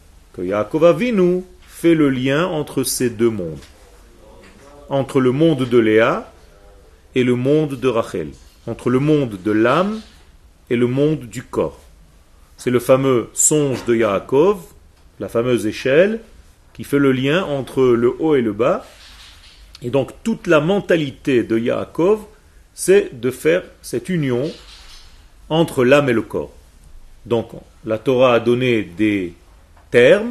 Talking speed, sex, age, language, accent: 140 wpm, male, 40-59, French, French